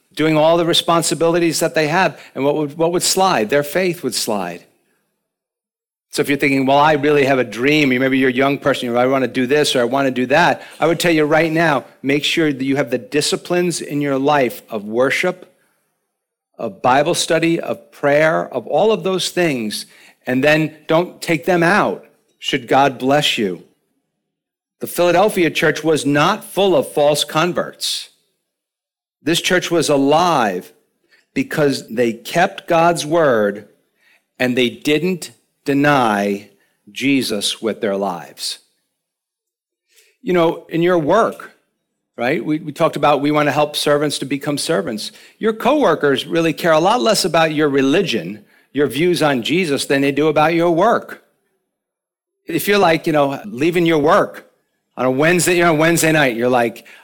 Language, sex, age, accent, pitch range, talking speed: English, male, 50-69, American, 135-170 Hz, 175 wpm